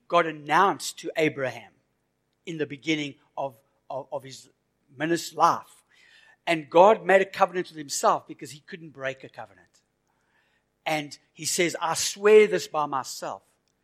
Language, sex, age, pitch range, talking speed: English, male, 60-79, 145-180 Hz, 150 wpm